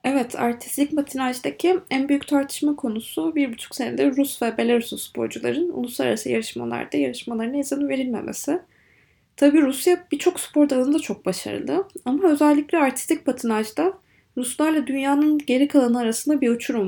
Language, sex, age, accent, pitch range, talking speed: Turkish, female, 20-39, native, 250-310 Hz, 130 wpm